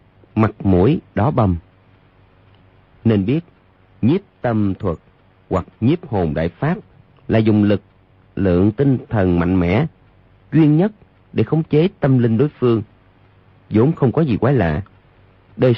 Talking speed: 145 wpm